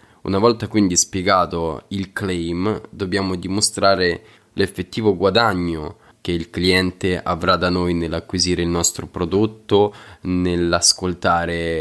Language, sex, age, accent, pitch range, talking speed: Italian, male, 20-39, native, 85-95 Hz, 105 wpm